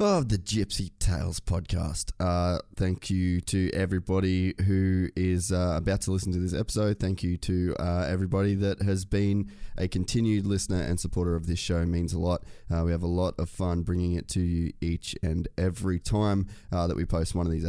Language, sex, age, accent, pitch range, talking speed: English, male, 20-39, Australian, 90-100 Hz, 210 wpm